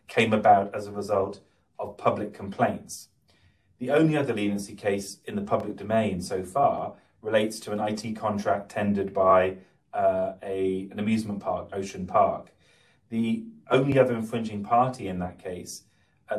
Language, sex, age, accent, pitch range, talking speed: English, male, 30-49, British, 95-115 Hz, 150 wpm